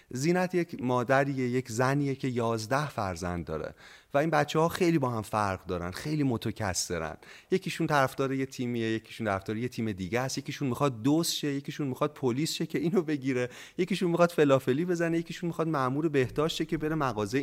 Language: Persian